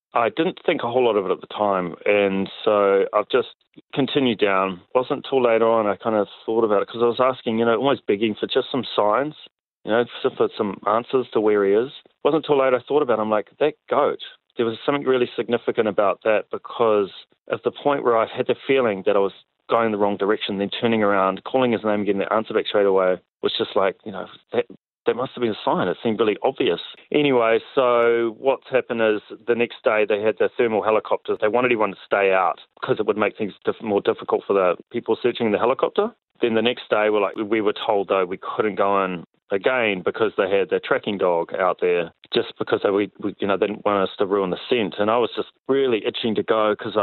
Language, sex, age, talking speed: English, male, 30-49, 240 wpm